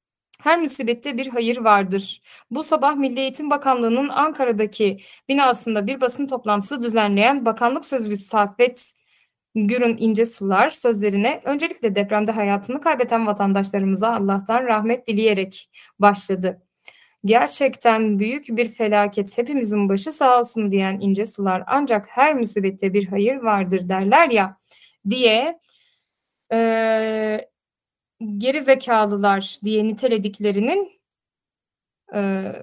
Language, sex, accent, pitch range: Turkish, female, native, 200-255 Hz